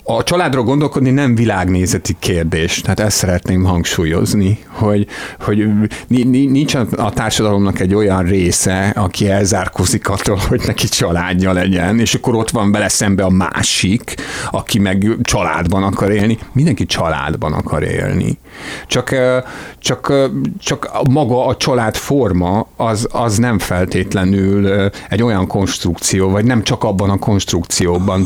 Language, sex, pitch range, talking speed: Hungarian, male, 90-115 Hz, 130 wpm